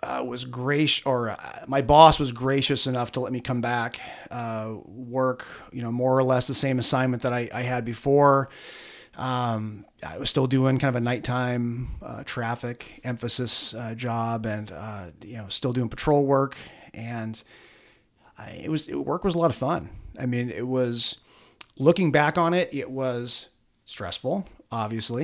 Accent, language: American, English